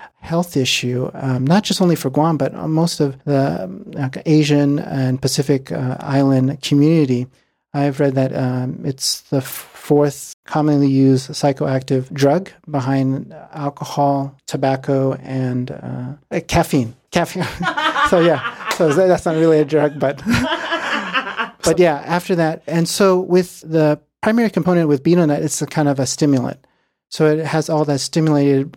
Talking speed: 145 wpm